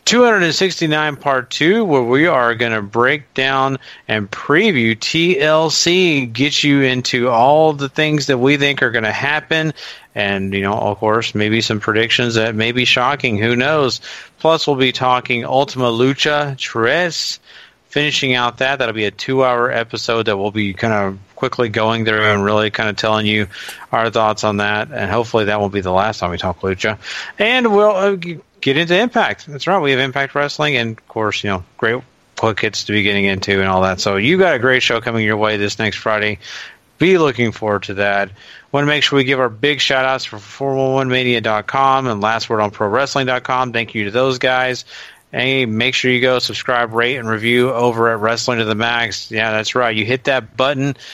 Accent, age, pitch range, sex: American, 40-59, 110-135 Hz, male